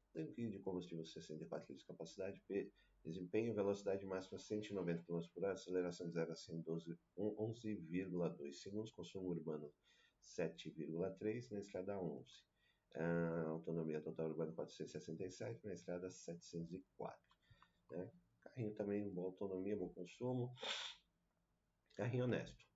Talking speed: 120 wpm